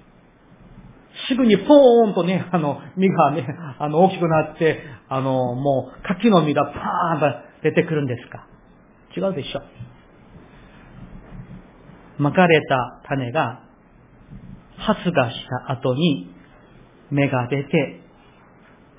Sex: male